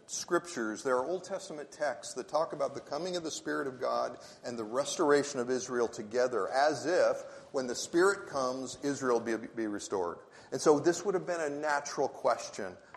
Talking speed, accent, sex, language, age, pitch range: 190 wpm, American, male, English, 50-69, 115-150 Hz